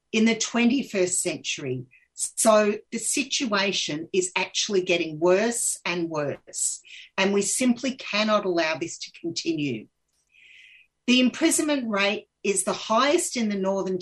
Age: 50-69